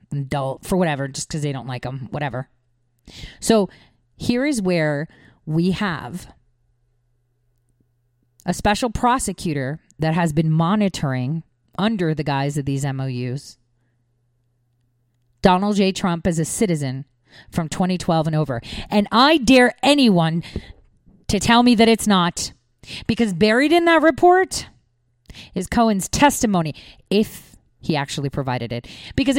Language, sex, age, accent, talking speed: English, female, 40-59, American, 130 wpm